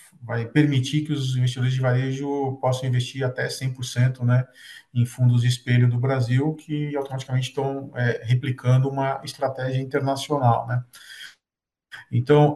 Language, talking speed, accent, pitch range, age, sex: Portuguese, 135 wpm, Brazilian, 120-145 Hz, 50-69, male